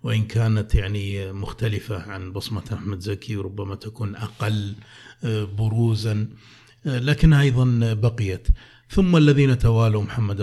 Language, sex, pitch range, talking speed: Arabic, male, 105-125 Hz, 110 wpm